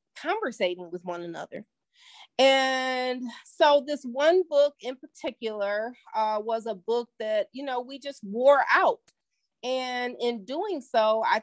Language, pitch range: English, 215-265 Hz